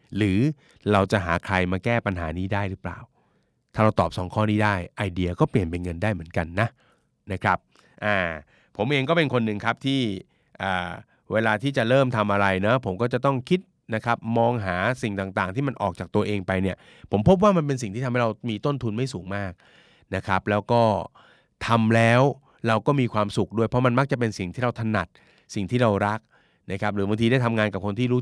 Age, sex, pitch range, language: 20-39, male, 100-125 Hz, Thai